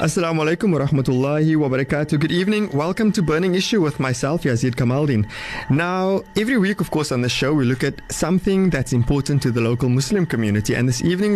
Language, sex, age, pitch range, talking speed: English, male, 20-39, 130-180 Hz, 200 wpm